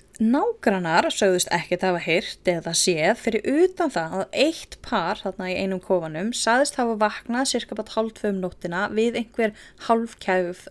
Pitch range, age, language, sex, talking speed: 185-260 Hz, 20-39, English, female, 145 wpm